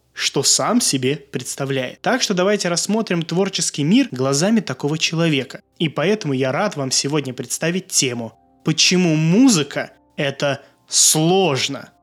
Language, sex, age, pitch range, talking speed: Russian, male, 20-39, 140-195 Hz, 125 wpm